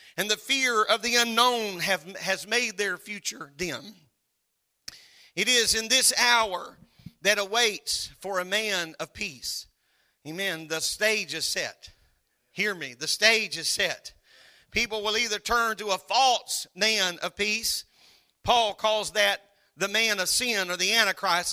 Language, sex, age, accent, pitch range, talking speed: English, male, 40-59, American, 195-235 Hz, 155 wpm